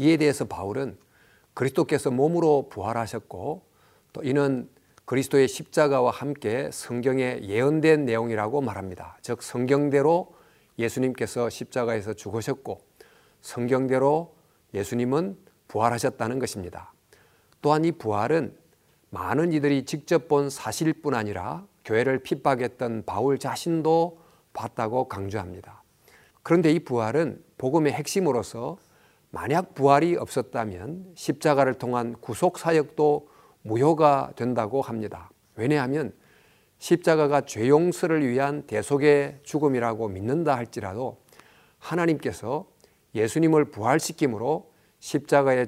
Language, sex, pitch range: Korean, male, 115-155 Hz